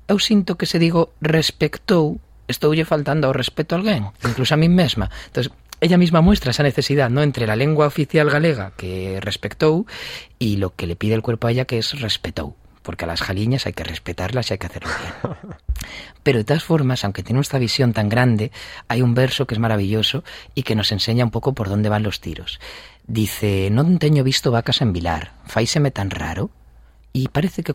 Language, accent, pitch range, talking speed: Spanish, Spanish, 100-145 Hz, 205 wpm